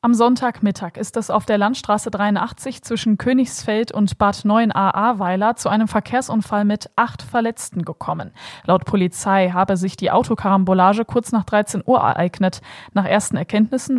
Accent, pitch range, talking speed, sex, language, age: German, 185-220 Hz, 150 wpm, female, German, 20-39